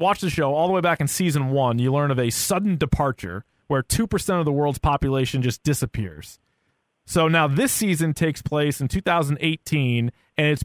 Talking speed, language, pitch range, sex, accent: 190 wpm, English, 125-160 Hz, male, American